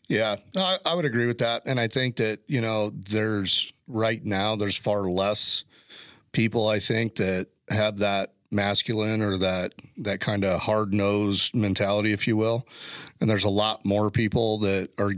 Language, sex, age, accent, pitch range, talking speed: English, male, 40-59, American, 100-115 Hz, 180 wpm